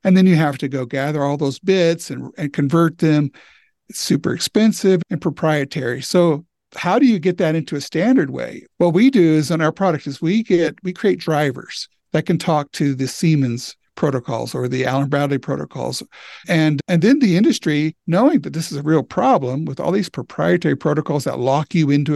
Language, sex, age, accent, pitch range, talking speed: English, male, 50-69, American, 145-185 Hz, 205 wpm